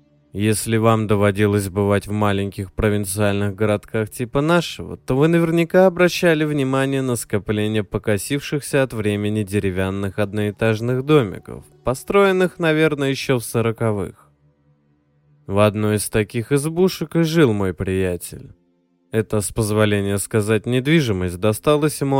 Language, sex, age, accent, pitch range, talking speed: Russian, male, 20-39, native, 100-135 Hz, 120 wpm